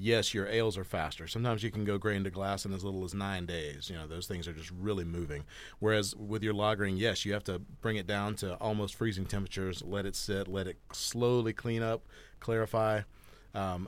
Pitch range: 95-110 Hz